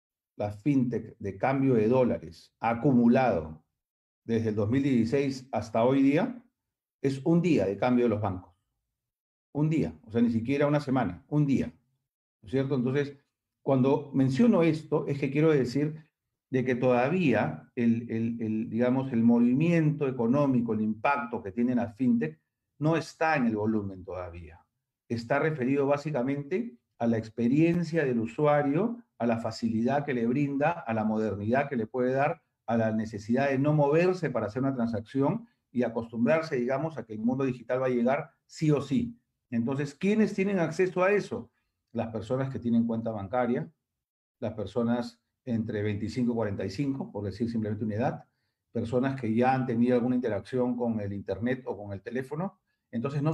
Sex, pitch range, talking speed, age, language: male, 115-145 Hz, 170 wpm, 40-59, Spanish